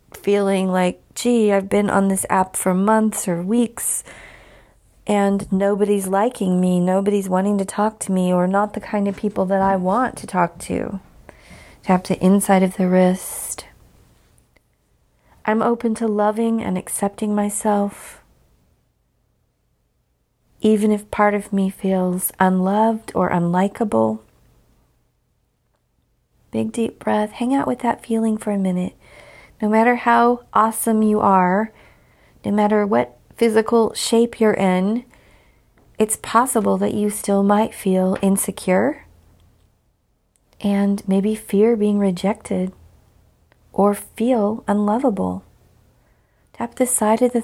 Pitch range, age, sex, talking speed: 190-220 Hz, 40-59, female, 130 wpm